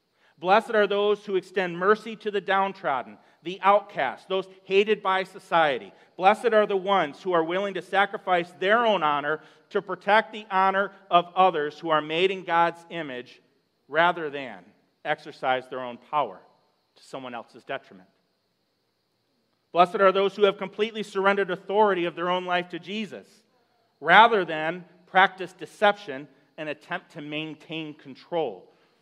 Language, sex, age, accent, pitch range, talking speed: English, male, 40-59, American, 165-205 Hz, 150 wpm